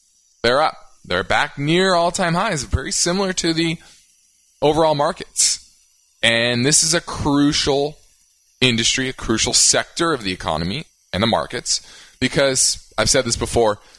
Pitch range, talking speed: 95-145 Hz, 145 wpm